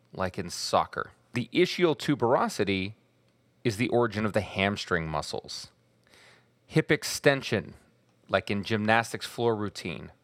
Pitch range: 100-130 Hz